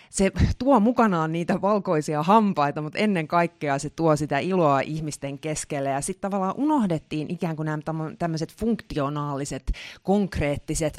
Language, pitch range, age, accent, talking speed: Finnish, 145-190 Hz, 30-49, native, 130 wpm